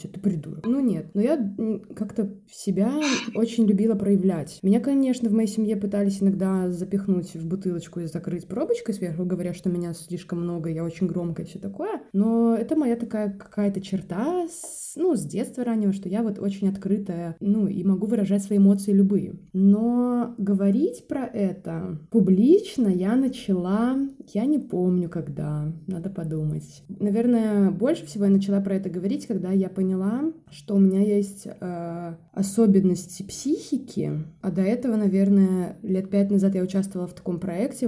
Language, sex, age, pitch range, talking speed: Russian, female, 20-39, 185-225 Hz, 160 wpm